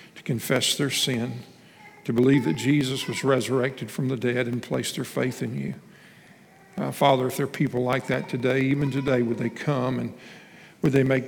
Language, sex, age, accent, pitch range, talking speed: English, male, 50-69, American, 130-150 Hz, 195 wpm